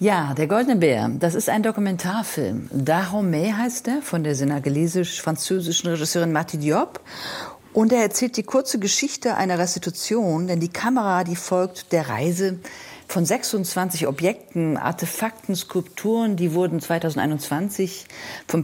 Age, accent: 50-69, German